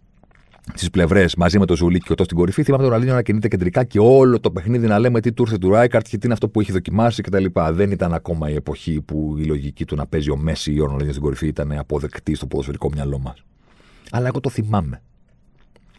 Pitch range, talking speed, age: 75-105 Hz, 235 wpm, 40-59